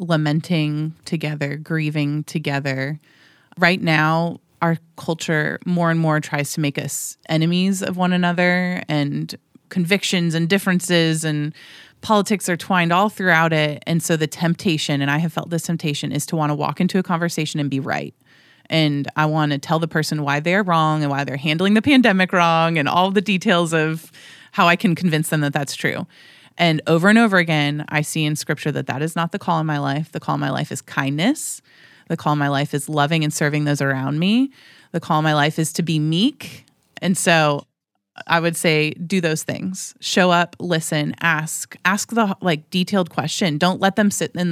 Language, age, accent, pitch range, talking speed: English, 30-49, American, 150-180 Hz, 200 wpm